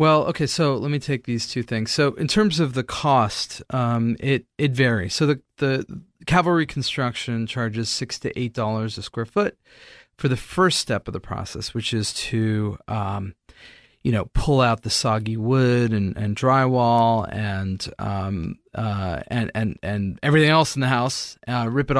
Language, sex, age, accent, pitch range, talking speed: English, male, 30-49, American, 110-140 Hz, 185 wpm